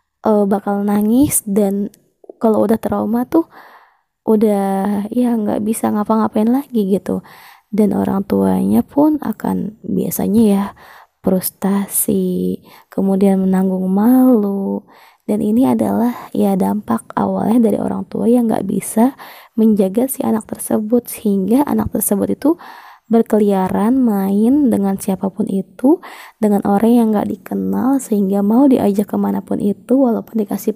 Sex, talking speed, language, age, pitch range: female, 120 wpm, Indonesian, 20-39, 200-235 Hz